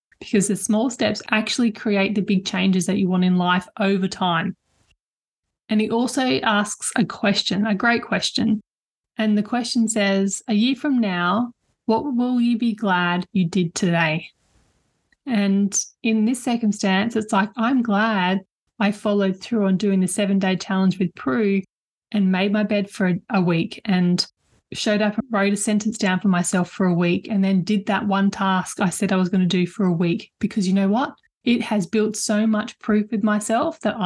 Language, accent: English, Australian